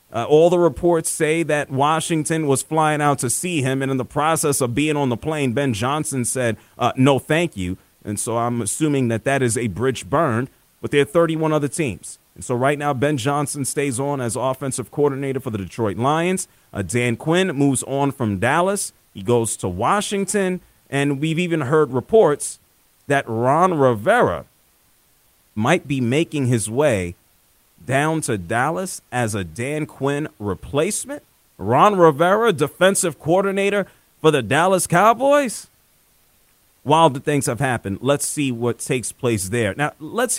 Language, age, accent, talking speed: English, 30-49, American, 165 wpm